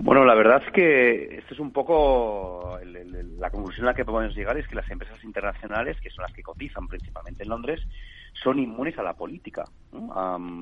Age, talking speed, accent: 40-59, 220 wpm, Spanish